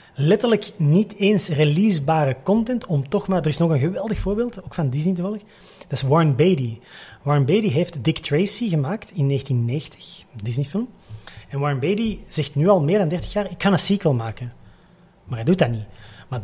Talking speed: 195 wpm